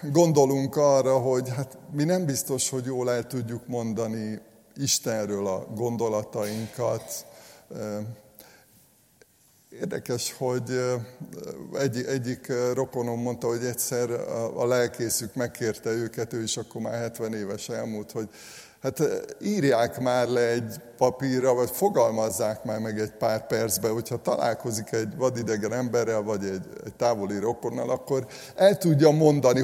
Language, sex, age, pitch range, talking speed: Hungarian, male, 50-69, 115-145 Hz, 125 wpm